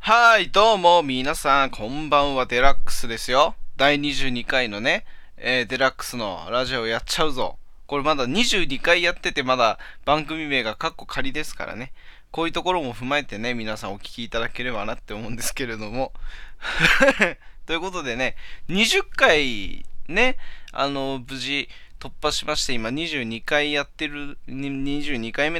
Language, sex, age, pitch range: Japanese, male, 20-39, 125-180 Hz